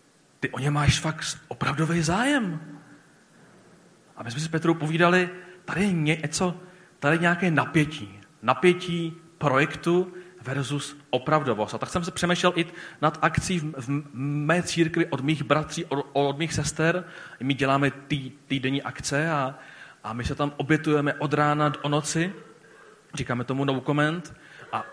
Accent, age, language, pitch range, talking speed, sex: native, 40-59, Czech, 135-165 Hz, 155 wpm, male